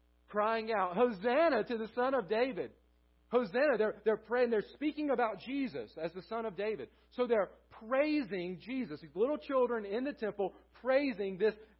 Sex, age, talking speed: male, 40-59, 170 wpm